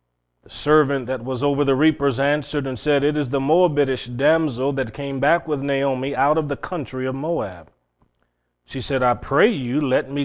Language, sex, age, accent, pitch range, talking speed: English, male, 30-49, American, 115-145 Hz, 185 wpm